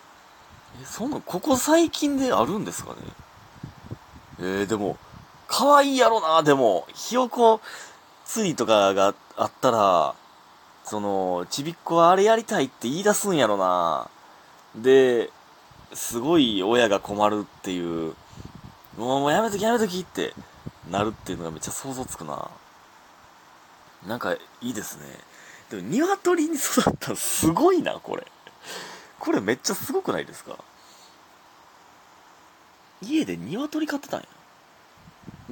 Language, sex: Japanese, male